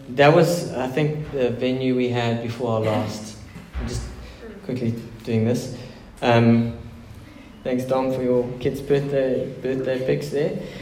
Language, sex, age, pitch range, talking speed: English, male, 20-39, 115-135 Hz, 145 wpm